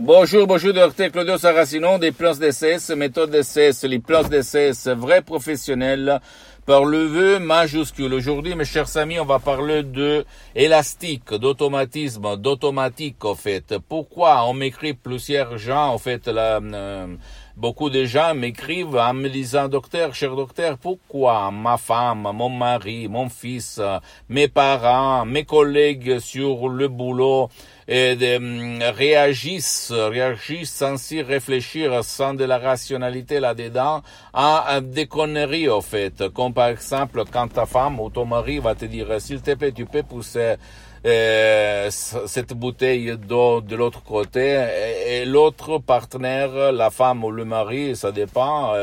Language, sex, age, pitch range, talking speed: Italian, male, 60-79, 120-145 Hz, 150 wpm